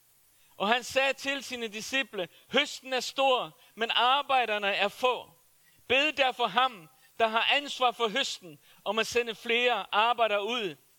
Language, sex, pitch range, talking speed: Danish, male, 230-275 Hz, 145 wpm